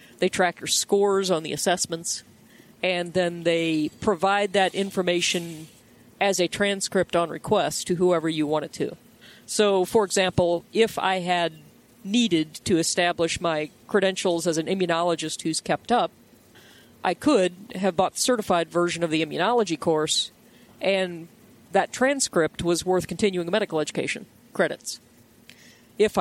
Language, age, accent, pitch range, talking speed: English, 40-59, American, 165-195 Hz, 140 wpm